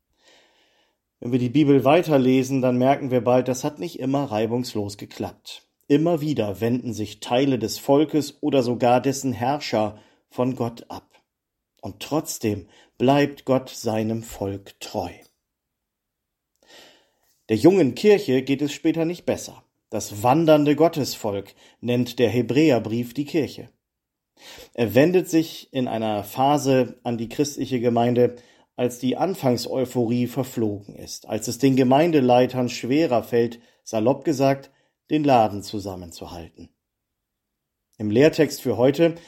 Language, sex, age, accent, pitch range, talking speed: German, male, 40-59, German, 115-140 Hz, 125 wpm